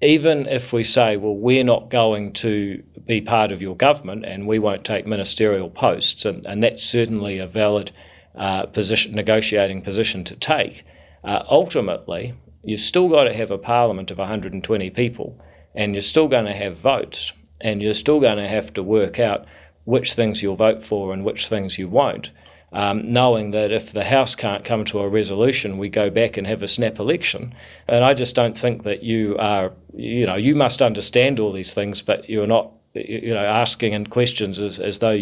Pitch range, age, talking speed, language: 100-115 Hz, 40-59, 195 wpm, English